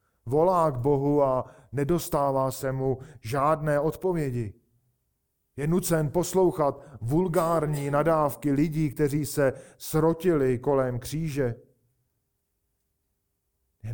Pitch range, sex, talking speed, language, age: 110-140 Hz, male, 90 wpm, Czech, 40-59